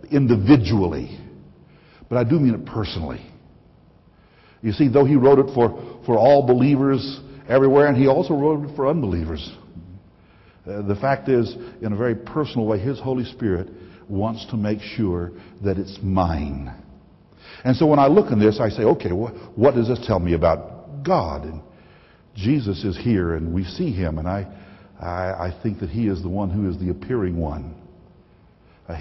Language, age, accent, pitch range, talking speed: English, 60-79, American, 90-125 Hz, 180 wpm